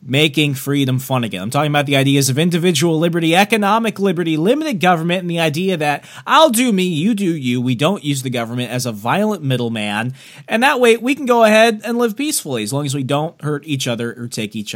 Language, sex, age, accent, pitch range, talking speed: English, male, 30-49, American, 120-175 Hz, 230 wpm